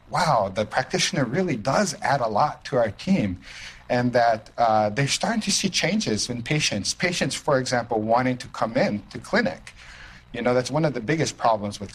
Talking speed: 195 wpm